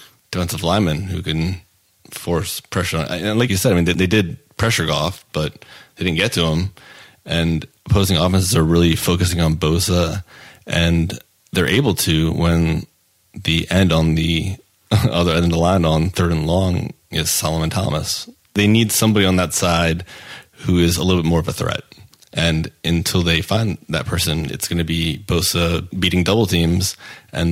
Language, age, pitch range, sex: English, 30-49, 85-95 Hz, male